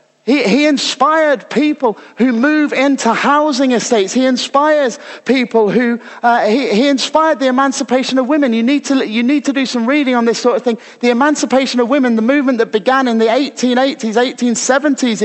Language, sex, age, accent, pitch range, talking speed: English, male, 30-49, British, 225-285 Hz, 195 wpm